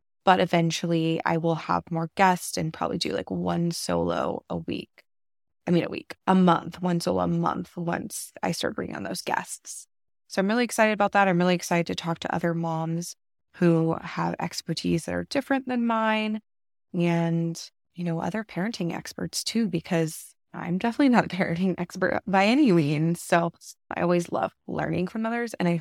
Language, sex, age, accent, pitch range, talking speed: English, female, 20-39, American, 165-200 Hz, 185 wpm